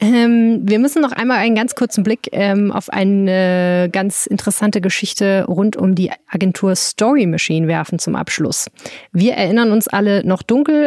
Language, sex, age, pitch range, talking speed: German, female, 30-49, 180-210 Hz, 165 wpm